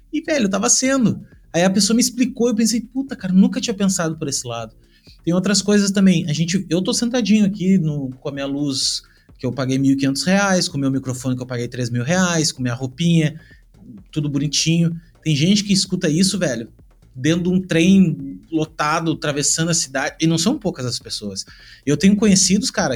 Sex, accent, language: male, Brazilian, Portuguese